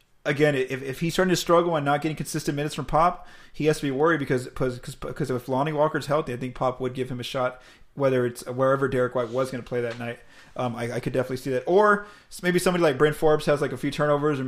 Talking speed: 260 wpm